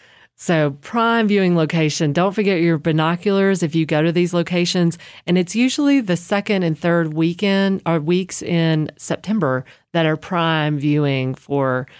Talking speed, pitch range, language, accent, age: 155 wpm, 140-175 Hz, English, American, 40-59